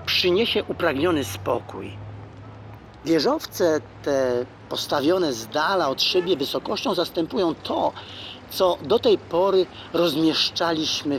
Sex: male